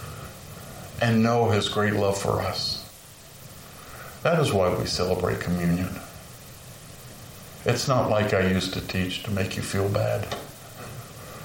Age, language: 50-69, English